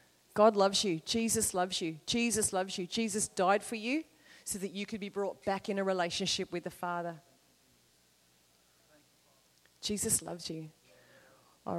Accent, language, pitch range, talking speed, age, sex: Australian, English, 180-220 Hz, 155 wpm, 30-49, female